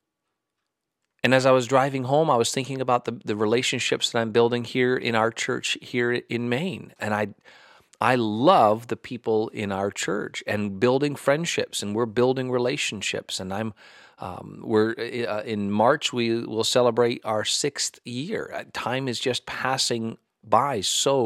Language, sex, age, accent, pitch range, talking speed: English, male, 40-59, American, 105-130 Hz, 165 wpm